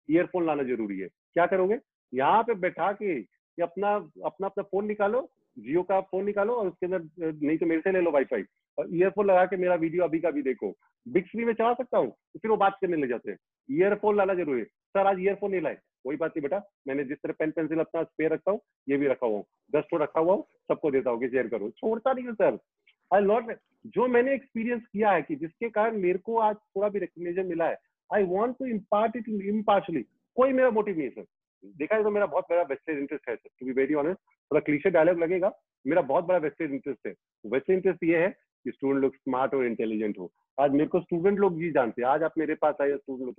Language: English